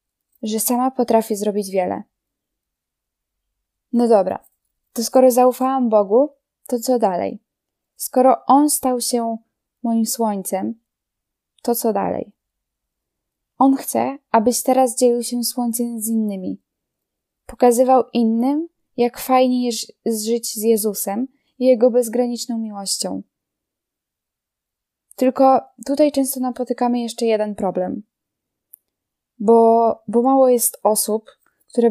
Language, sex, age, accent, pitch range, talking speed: Polish, female, 10-29, native, 220-255 Hz, 105 wpm